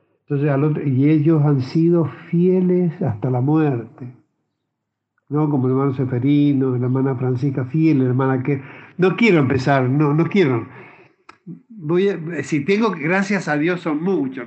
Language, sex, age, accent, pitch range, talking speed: Spanish, male, 60-79, Argentinian, 135-165 Hz, 155 wpm